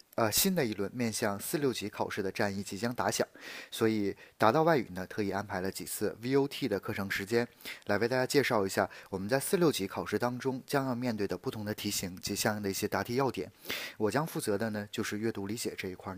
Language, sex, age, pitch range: Chinese, male, 20-39, 100-130 Hz